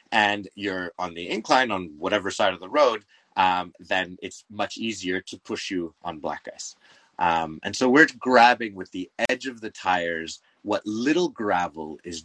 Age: 30-49